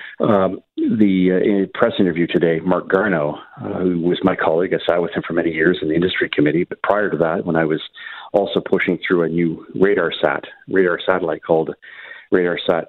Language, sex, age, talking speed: English, male, 50-69, 205 wpm